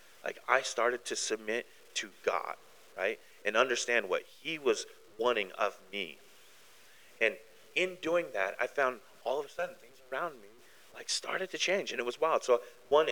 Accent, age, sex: American, 40-59, male